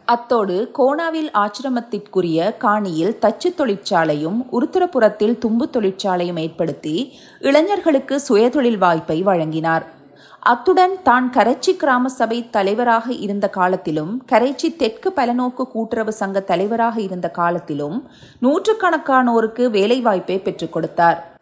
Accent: native